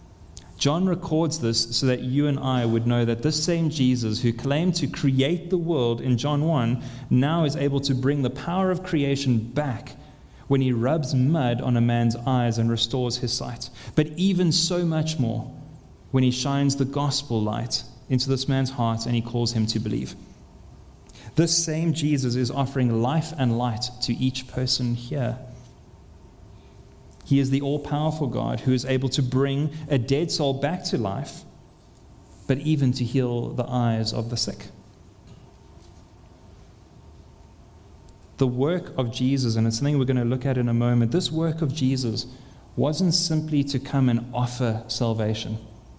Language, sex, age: English, male, 30-49